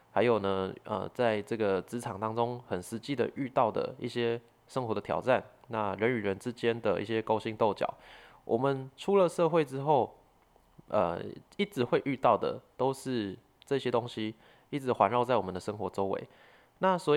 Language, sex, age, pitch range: Chinese, male, 20-39, 105-125 Hz